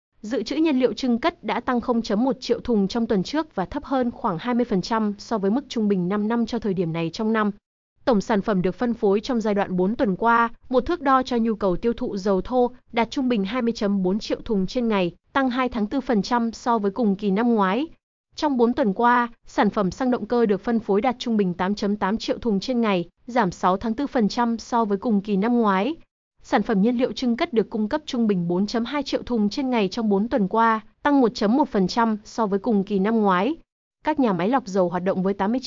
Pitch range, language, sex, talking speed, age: 200-250 Hz, Vietnamese, female, 230 wpm, 20-39